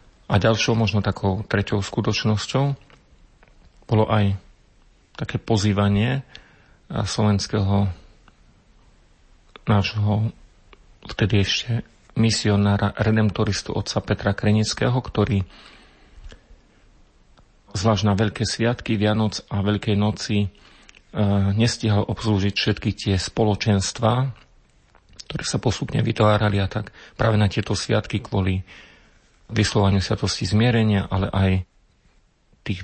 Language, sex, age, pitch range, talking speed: Slovak, male, 40-59, 95-110 Hz, 95 wpm